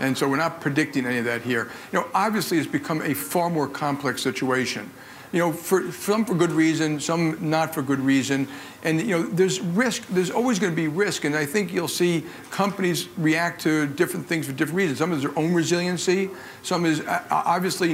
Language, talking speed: English, 210 wpm